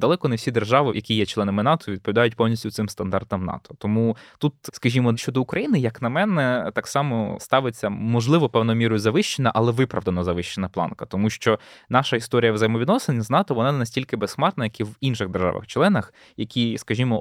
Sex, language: male, Ukrainian